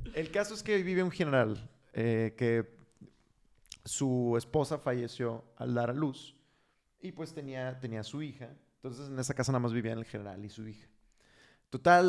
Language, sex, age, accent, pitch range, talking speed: Spanish, male, 30-49, Mexican, 120-140 Hz, 175 wpm